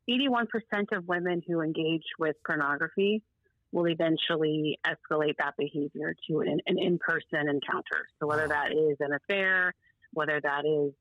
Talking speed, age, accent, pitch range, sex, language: 135 wpm, 30-49, American, 150-175 Hz, female, English